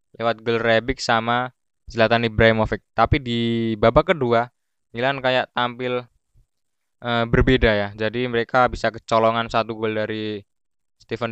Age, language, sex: 20-39, Indonesian, male